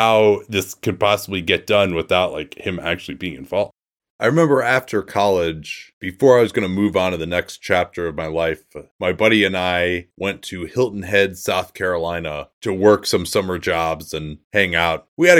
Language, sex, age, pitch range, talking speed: English, male, 30-49, 90-110 Hz, 200 wpm